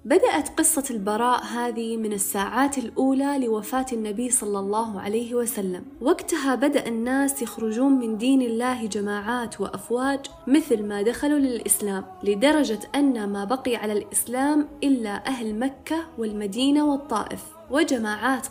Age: 20-39